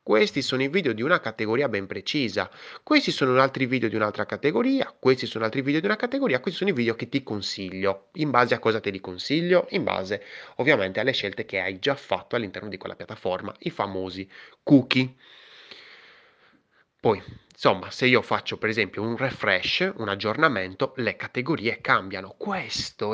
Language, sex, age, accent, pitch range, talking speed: Italian, male, 20-39, native, 105-150 Hz, 175 wpm